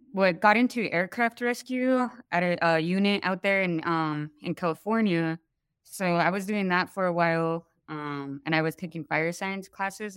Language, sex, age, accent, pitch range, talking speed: English, female, 20-39, American, 155-185 Hz, 190 wpm